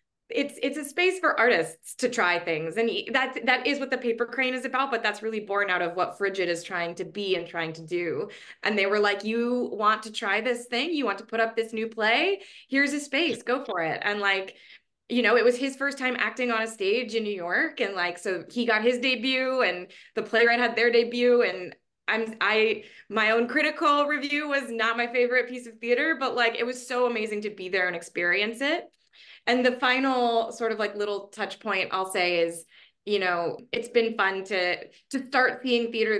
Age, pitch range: 20-39, 195-250 Hz